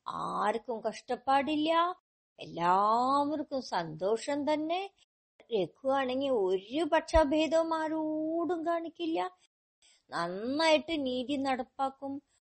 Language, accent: Malayalam, native